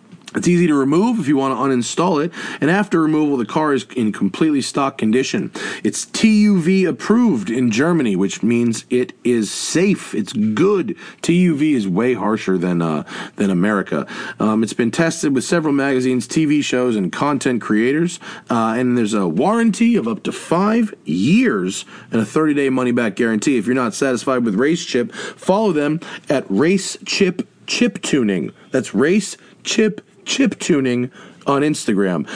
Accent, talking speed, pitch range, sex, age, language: American, 165 wpm, 125-200 Hz, male, 40-59, English